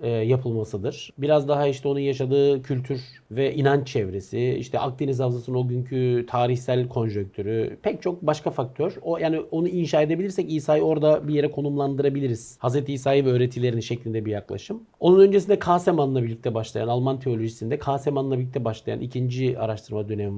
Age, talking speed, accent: 50-69, 150 wpm, native